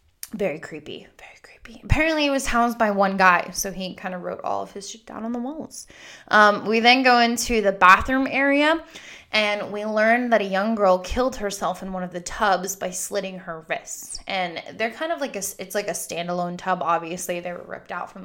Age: 20-39